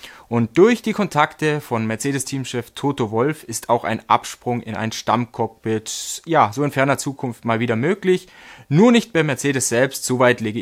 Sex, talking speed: male, 170 wpm